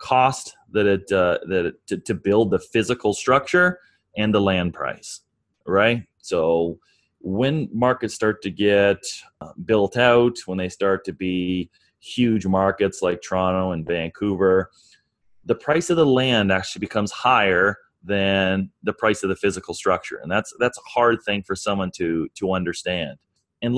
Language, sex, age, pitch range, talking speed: English, male, 30-49, 95-125 Hz, 160 wpm